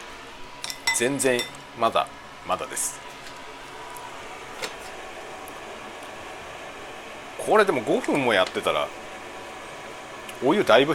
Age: 40-59